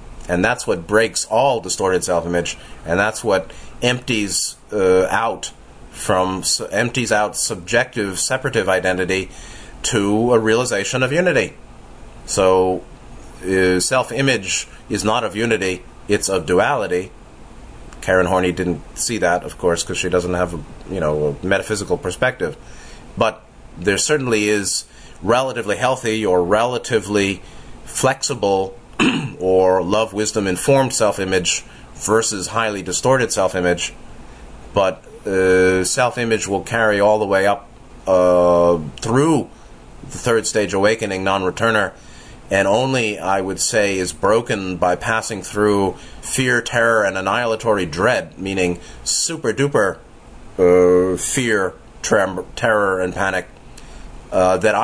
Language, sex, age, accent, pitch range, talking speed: English, male, 30-49, American, 90-110 Hz, 115 wpm